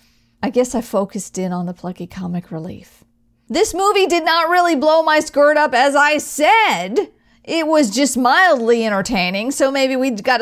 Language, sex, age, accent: English, female, 50-69, American